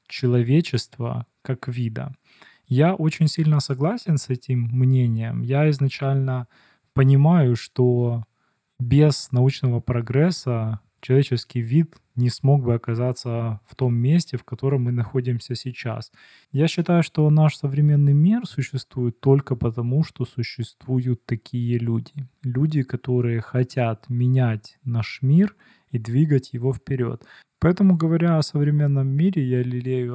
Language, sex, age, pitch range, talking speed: Russian, male, 20-39, 120-140 Hz, 120 wpm